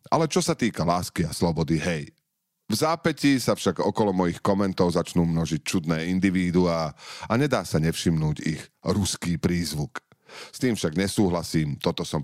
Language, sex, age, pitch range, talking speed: Slovak, male, 40-59, 85-115 Hz, 155 wpm